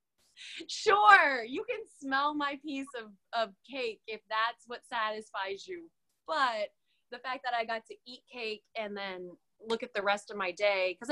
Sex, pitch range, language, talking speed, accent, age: female, 195-250 Hz, English, 180 wpm, American, 20-39